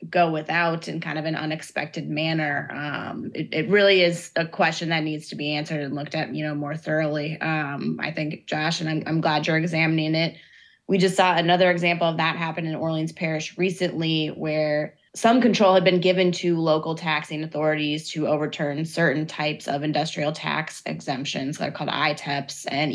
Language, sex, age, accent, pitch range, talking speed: English, female, 20-39, American, 155-175 Hz, 190 wpm